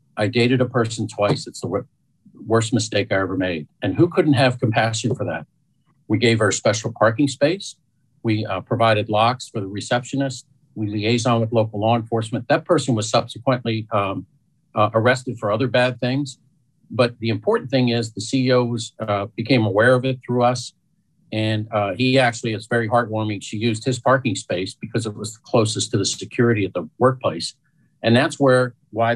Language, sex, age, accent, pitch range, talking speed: English, male, 50-69, American, 110-130 Hz, 190 wpm